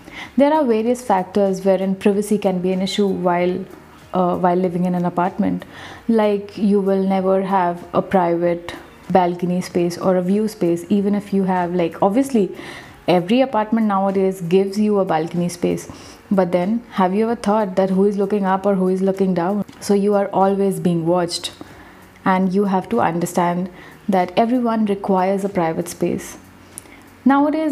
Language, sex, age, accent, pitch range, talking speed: English, female, 30-49, Indian, 180-205 Hz, 170 wpm